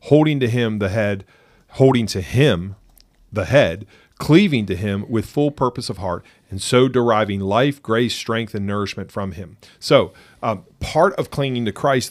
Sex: male